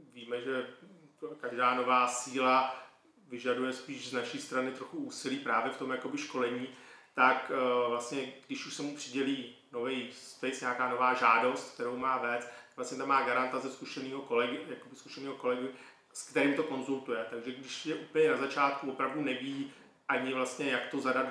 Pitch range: 120-135 Hz